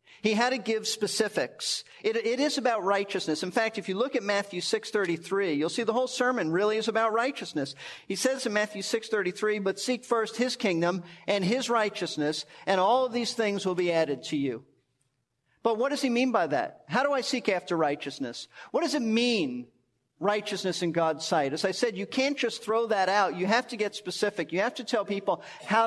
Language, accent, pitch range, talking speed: English, American, 185-235 Hz, 210 wpm